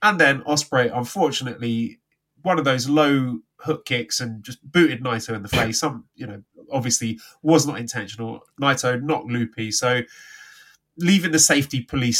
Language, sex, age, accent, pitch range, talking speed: English, male, 30-49, British, 120-160 Hz, 155 wpm